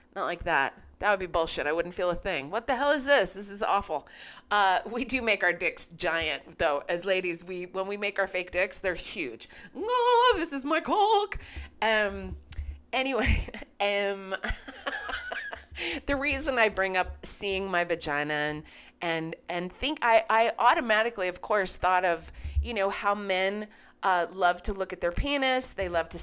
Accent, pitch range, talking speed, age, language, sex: American, 190-275 Hz, 180 wpm, 30-49, English, female